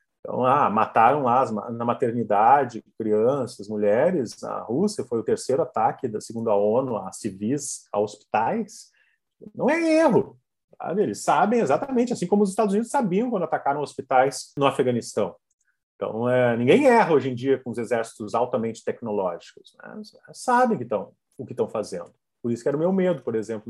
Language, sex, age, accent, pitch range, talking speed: Portuguese, male, 30-49, Brazilian, 125-210 Hz, 175 wpm